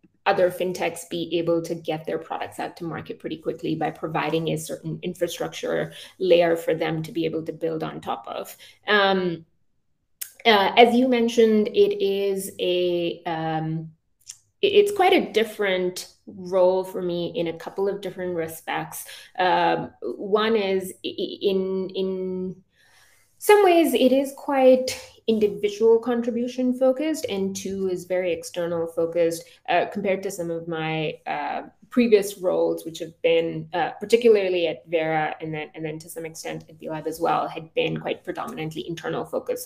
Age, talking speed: 20-39, 155 wpm